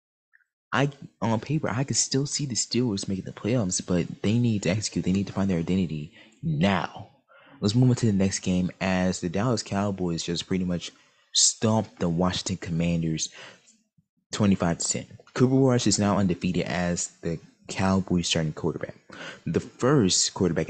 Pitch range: 85-115 Hz